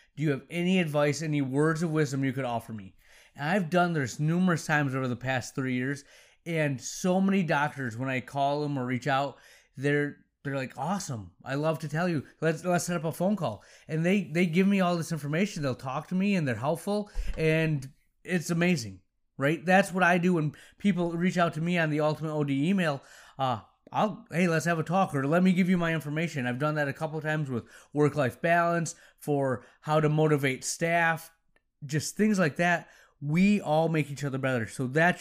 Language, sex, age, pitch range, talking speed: English, male, 30-49, 140-175 Hz, 215 wpm